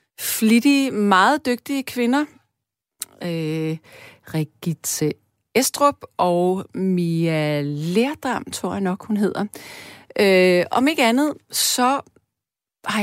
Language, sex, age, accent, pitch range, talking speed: Danish, female, 40-59, native, 185-240 Hz, 95 wpm